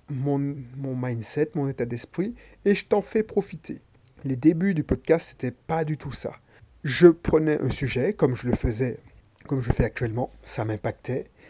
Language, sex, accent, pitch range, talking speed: French, male, French, 130-165 Hz, 185 wpm